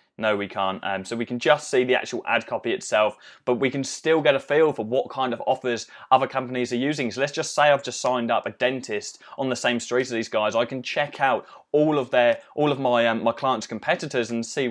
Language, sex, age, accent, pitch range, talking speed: English, male, 20-39, British, 95-125 Hz, 255 wpm